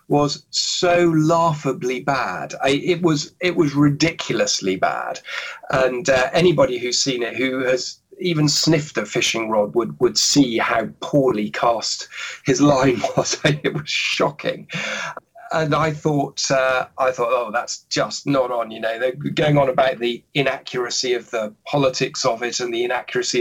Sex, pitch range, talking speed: male, 130-170 Hz, 160 wpm